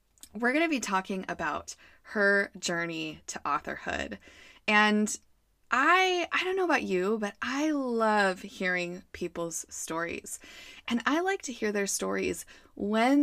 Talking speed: 140 wpm